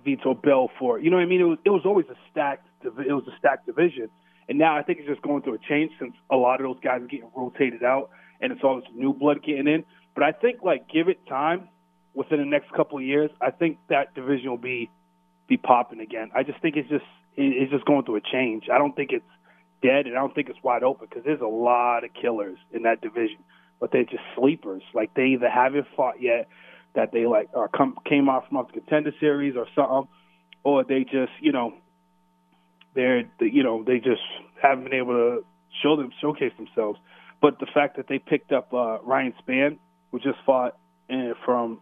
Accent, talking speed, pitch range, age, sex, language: American, 230 wpm, 120-150 Hz, 30-49, male, English